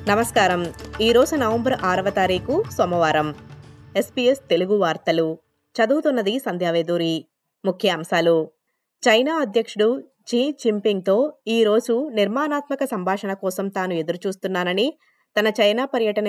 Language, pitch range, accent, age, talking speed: Telugu, 175-225 Hz, native, 20-39, 70 wpm